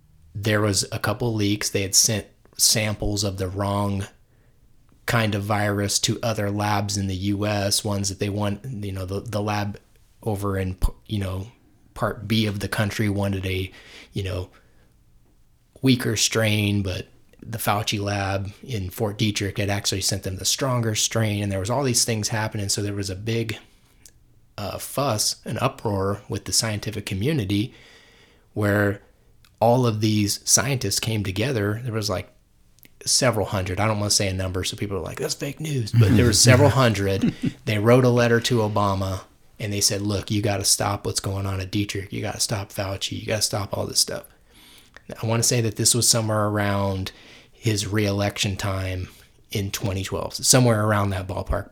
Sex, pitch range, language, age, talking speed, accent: male, 100-115 Hz, English, 20-39, 185 wpm, American